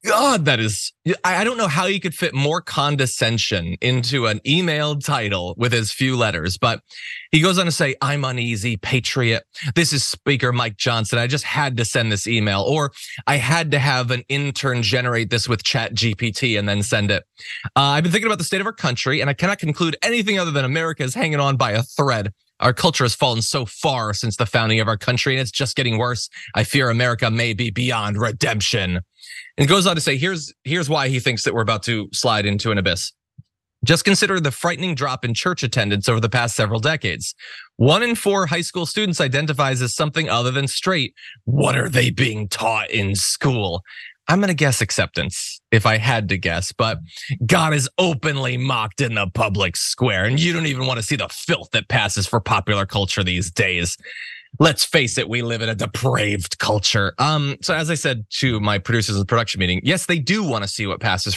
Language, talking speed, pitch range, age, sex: English, 215 wpm, 110-150 Hz, 20-39, male